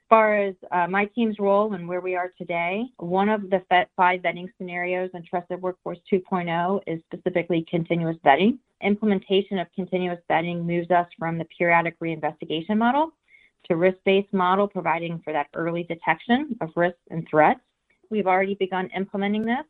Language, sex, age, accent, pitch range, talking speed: English, female, 30-49, American, 170-200 Hz, 165 wpm